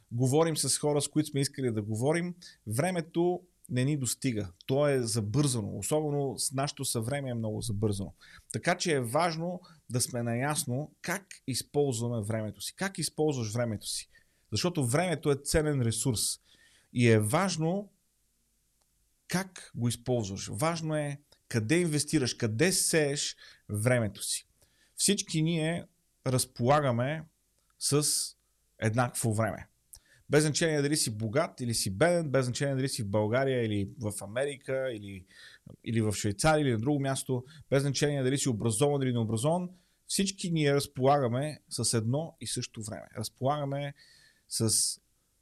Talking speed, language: 140 wpm, Bulgarian